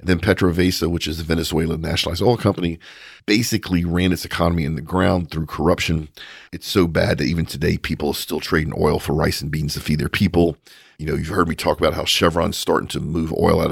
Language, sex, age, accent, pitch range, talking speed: English, male, 50-69, American, 80-100 Hz, 225 wpm